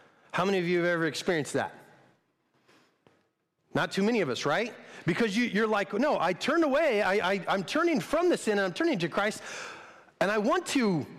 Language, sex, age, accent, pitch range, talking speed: English, male, 40-59, American, 165-225 Hz, 205 wpm